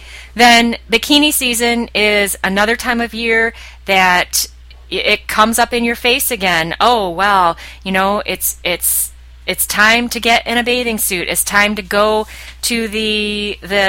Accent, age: American, 30-49